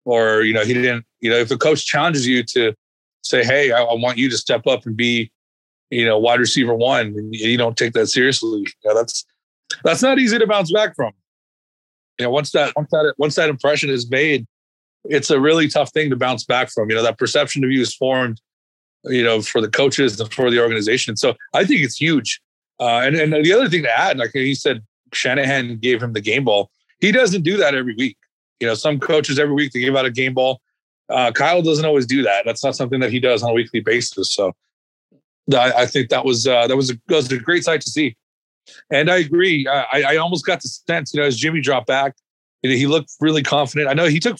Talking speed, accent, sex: 245 wpm, American, male